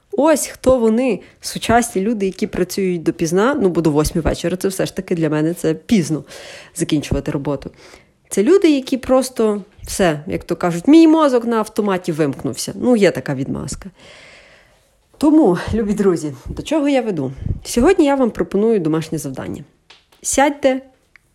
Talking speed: 150 wpm